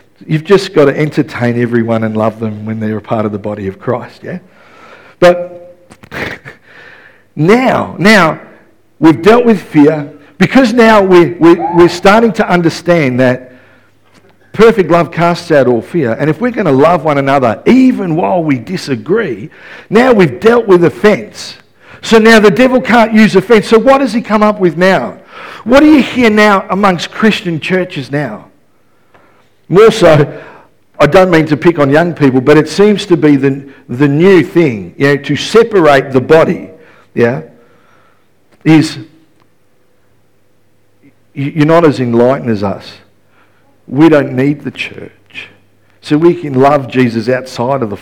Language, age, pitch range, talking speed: English, 50-69, 125-185 Hz, 160 wpm